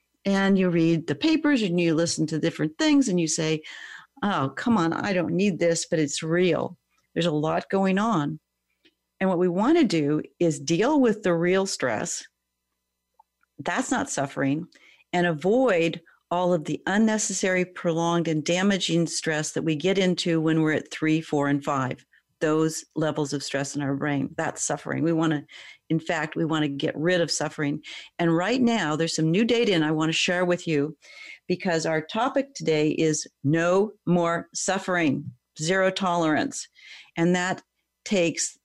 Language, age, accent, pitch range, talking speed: English, 50-69, American, 155-185 Hz, 175 wpm